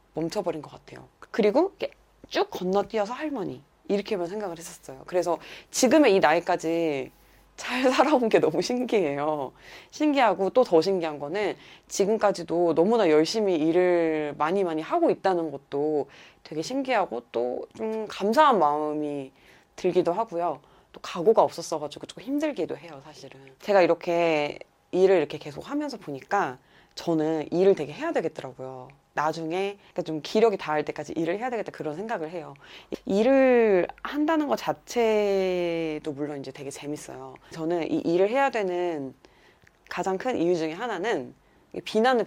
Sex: female